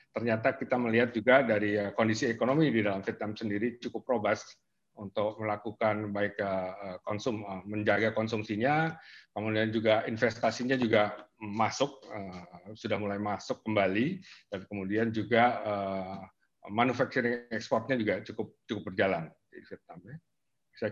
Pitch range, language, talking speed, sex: 100-120 Hz, Indonesian, 110 wpm, male